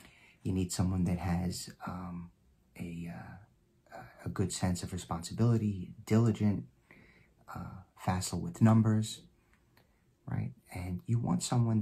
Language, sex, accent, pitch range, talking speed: English, male, American, 85-110 Hz, 115 wpm